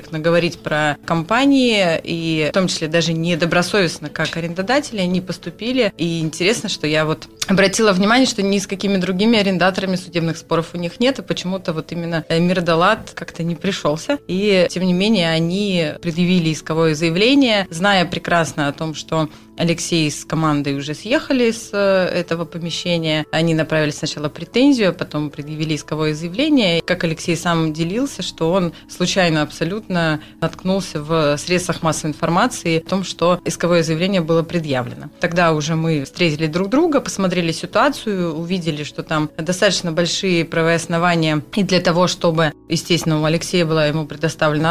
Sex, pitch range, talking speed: female, 160-190 Hz, 150 wpm